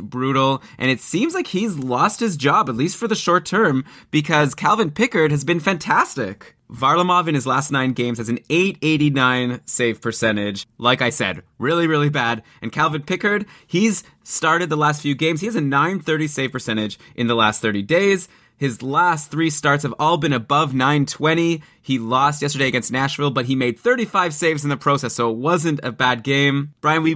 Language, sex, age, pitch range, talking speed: English, male, 20-39, 130-165 Hz, 195 wpm